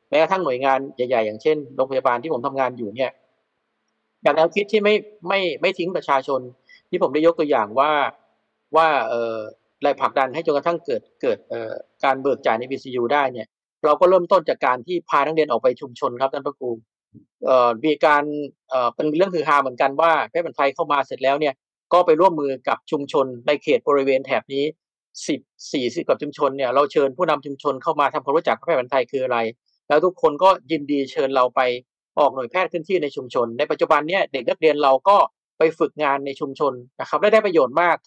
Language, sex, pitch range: Thai, male, 130-165 Hz